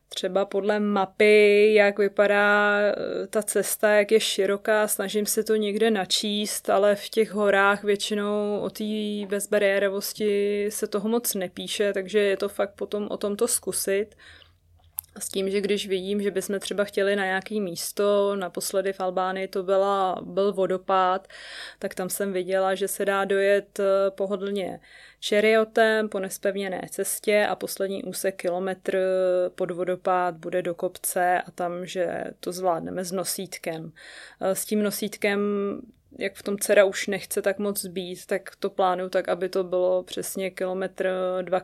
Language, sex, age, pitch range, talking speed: Czech, female, 20-39, 185-205 Hz, 150 wpm